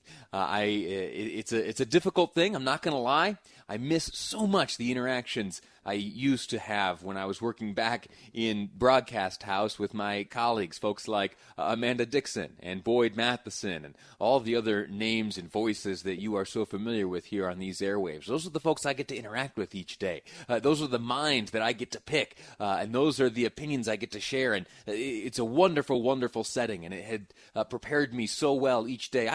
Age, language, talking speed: 30-49, English, 215 wpm